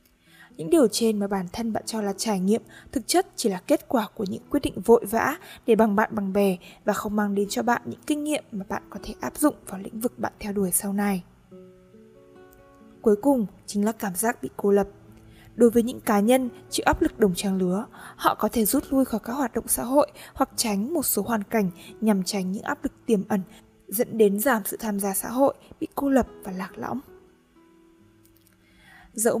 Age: 20-39